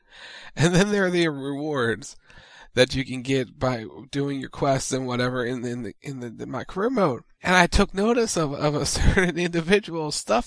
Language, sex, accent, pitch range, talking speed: English, male, American, 140-190 Hz, 220 wpm